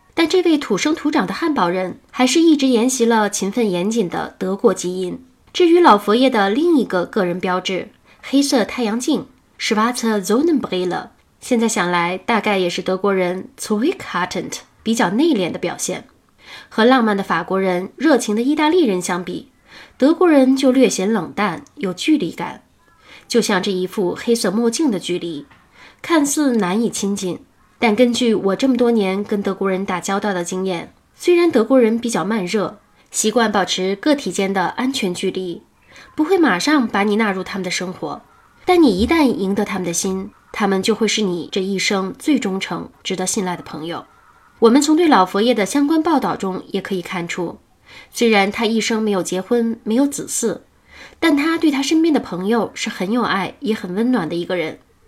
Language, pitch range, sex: Chinese, 190-265 Hz, female